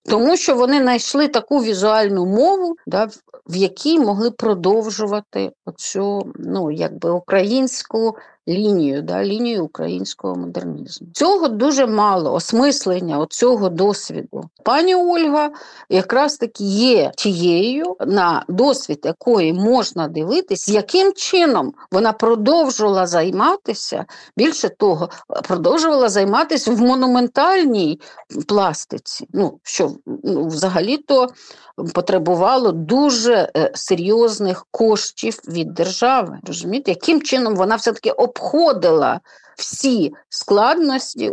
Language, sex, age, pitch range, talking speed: Ukrainian, female, 50-69, 190-265 Hz, 90 wpm